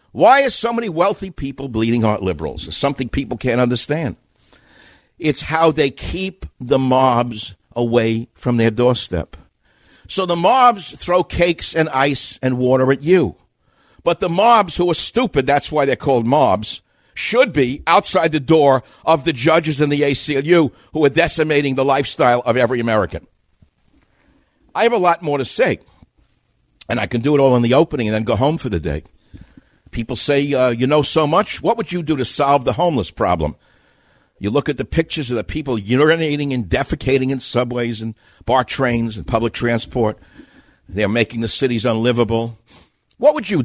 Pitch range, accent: 120-160 Hz, American